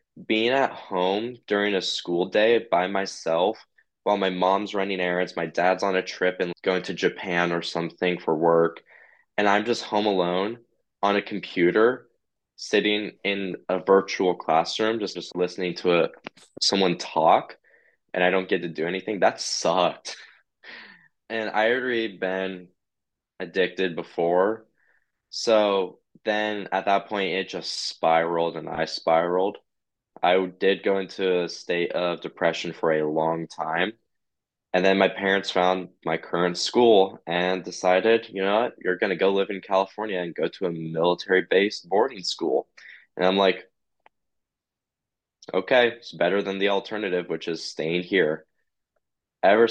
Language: English